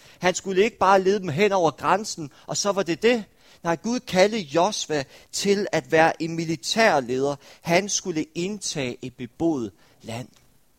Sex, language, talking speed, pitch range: male, Danish, 160 wpm, 145-200 Hz